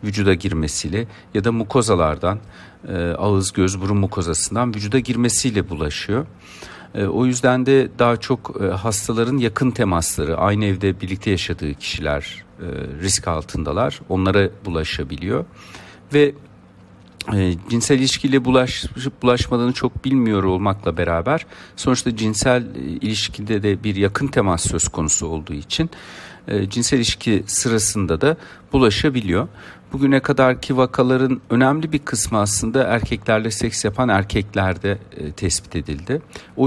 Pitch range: 90-120 Hz